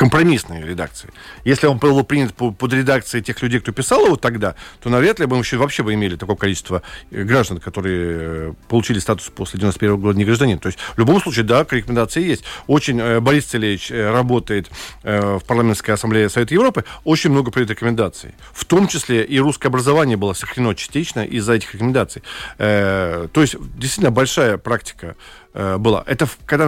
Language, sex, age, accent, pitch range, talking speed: Russian, male, 40-59, native, 105-140 Hz, 160 wpm